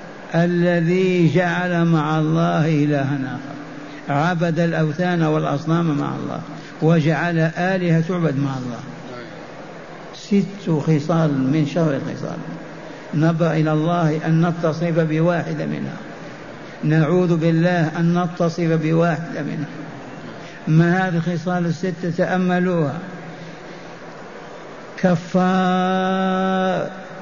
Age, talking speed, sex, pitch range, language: 60-79, 90 wpm, male, 160-185 Hz, Arabic